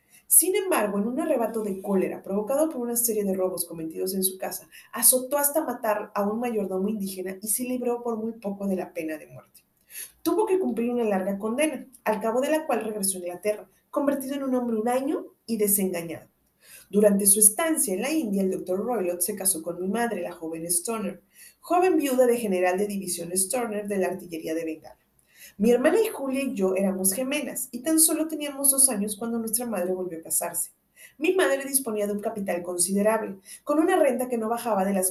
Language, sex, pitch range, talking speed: Spanish, female, 190-255 Hz, 205 wpm